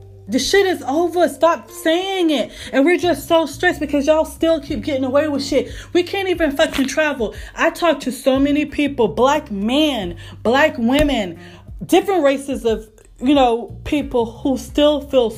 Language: English